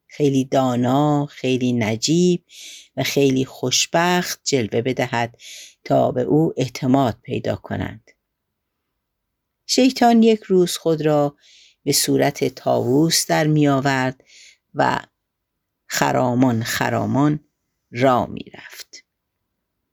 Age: 50-69